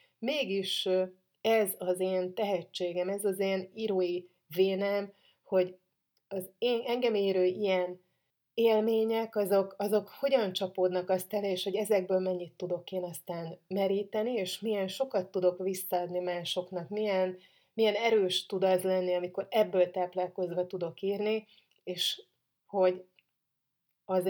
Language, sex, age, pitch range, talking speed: Hungarian, female, 30-49, 180-200 Hz, 125 wpm